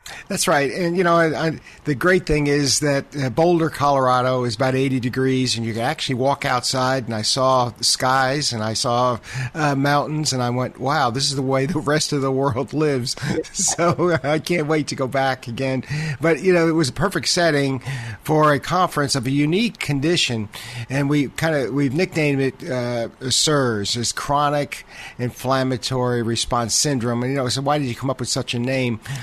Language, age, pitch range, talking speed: English, 50-69, 125-150 Hz, 195 wpm